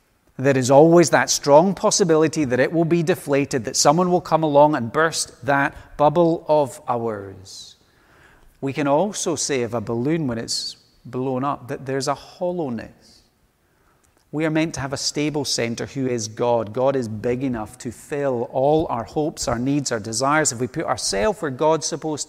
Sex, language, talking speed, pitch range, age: male, English, 185 wpm, 125-160 Hz, 30-49